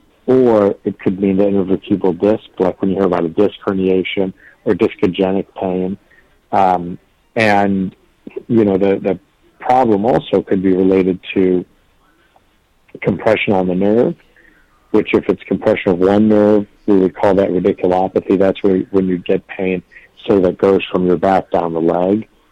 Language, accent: English, American